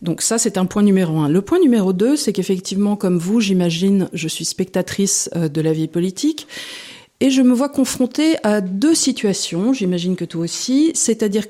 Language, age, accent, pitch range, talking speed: French, 40-59, French, 175-240 Hz, 190 wpm